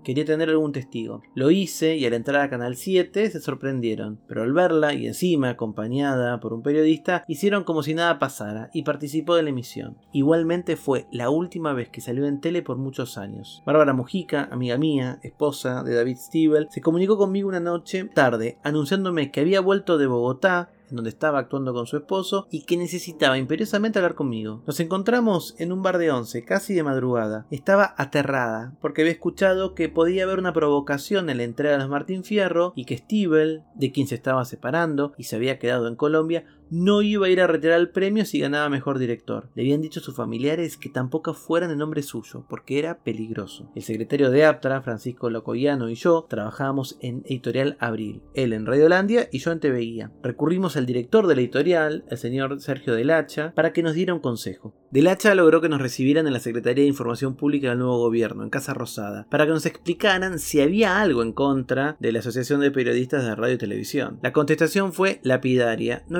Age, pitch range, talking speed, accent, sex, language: 30-49, 125-170 Hz, 200 wpm, Argentinian, male, Spanish